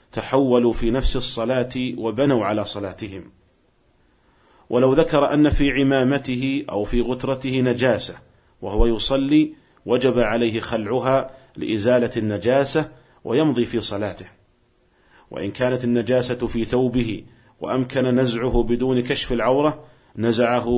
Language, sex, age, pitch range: Arabic, male, 40-59, 115-130 Hz